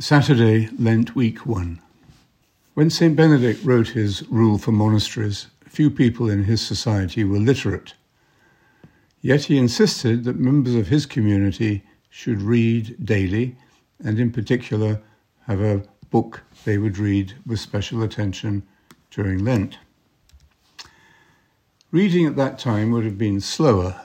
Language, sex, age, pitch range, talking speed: English, male, 60-79, 100-120 Hz, 130 wpm